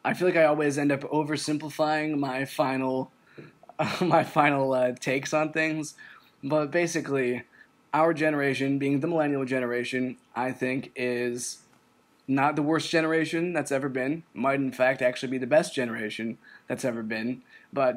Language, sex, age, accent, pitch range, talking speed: English, male, 20-39, American, 125-150 Hz, 155 wpm